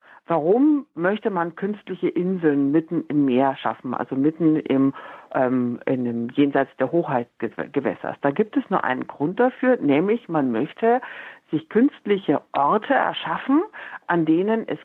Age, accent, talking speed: 60-79, German, 140 wpm